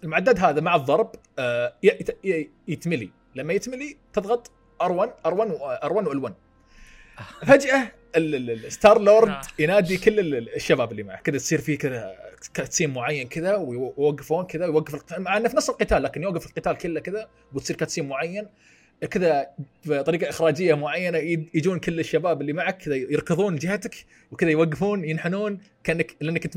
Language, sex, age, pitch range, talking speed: Arabic, male, 30-49, 155-225 Hz, 135 wpm